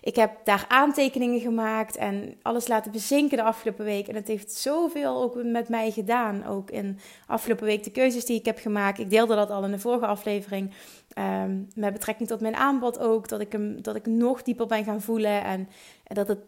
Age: 30-49